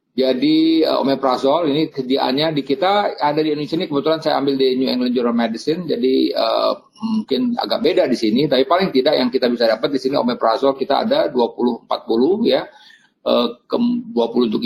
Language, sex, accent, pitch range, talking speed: Indonesian, male, native, 125-155 Hz, 170 wpm